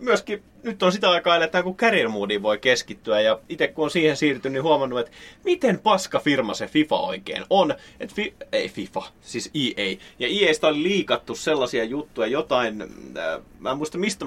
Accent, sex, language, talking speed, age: native, male, Finnish, 185 wpm, 30-49